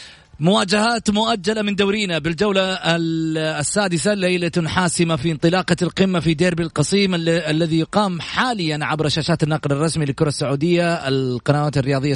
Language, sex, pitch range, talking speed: Arabic, male, 155-195 Hz, 125 wpm